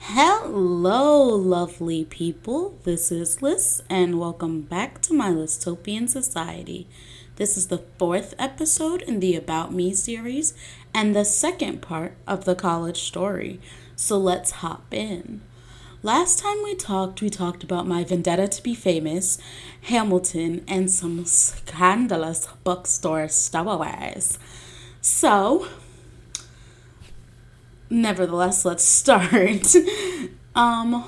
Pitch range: 175-255 Hz